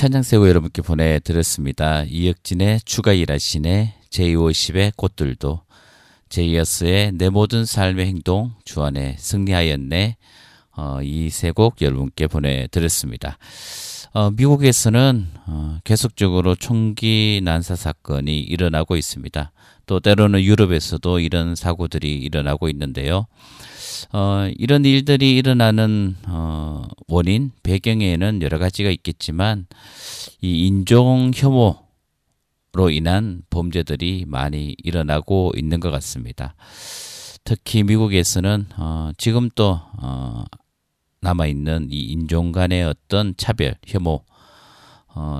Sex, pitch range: male, 80-105 Hz